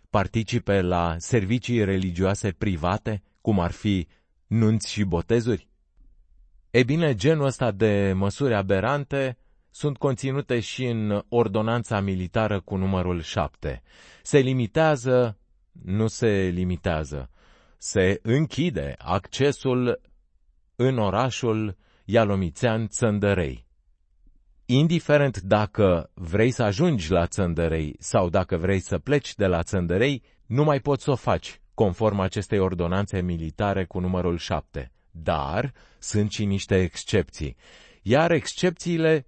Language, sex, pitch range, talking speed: Romanian, male, 90-125 Hz, 115 wpm